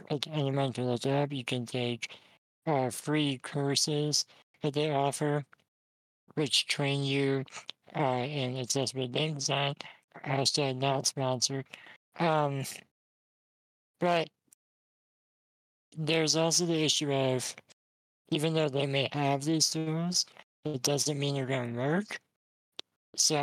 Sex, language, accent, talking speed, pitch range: male, English, American, 120 wpm, 125-150 Hz